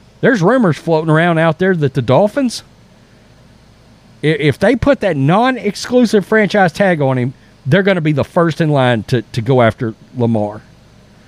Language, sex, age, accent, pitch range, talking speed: English, male, 40-59, American, 135-210 Hz, 165 wpm